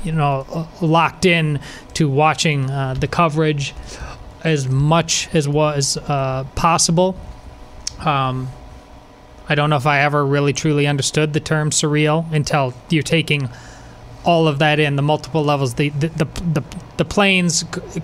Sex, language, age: male, English, 30-49